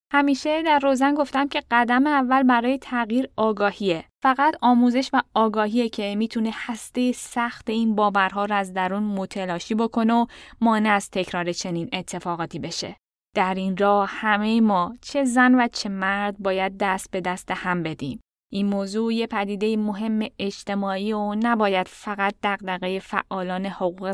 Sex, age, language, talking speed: female, 10-29, Persian, 150 wpm